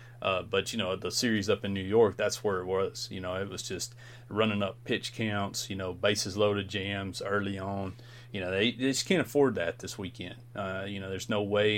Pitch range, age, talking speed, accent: 95-120 Hz, 30-49, 235 wpm, American